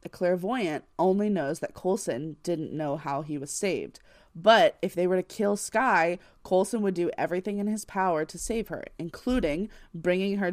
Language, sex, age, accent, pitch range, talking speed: English, female, 20-39, American, 170-205 Hz, 180 wpm